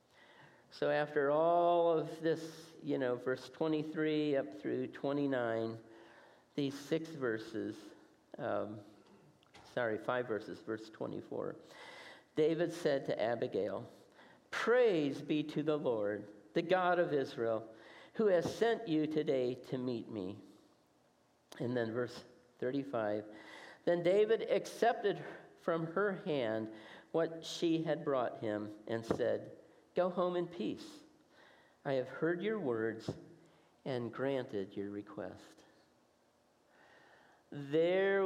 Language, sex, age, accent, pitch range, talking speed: English, male, 50-69, American, 115-160 Hz, 115 wpm